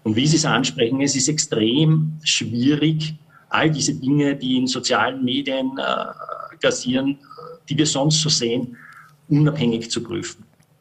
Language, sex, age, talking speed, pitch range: German, male, 50-69, 145 wpm, 115-150 Hz